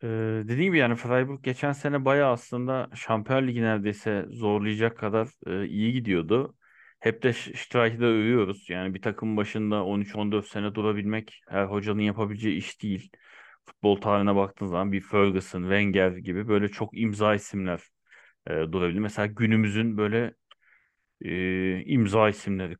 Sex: male